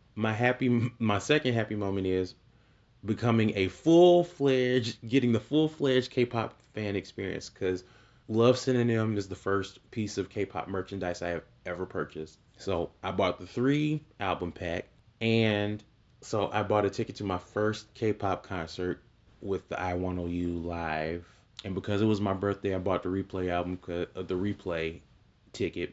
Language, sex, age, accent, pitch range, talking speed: English, male, 30-49, American, 90-115 Hz, 155 wpm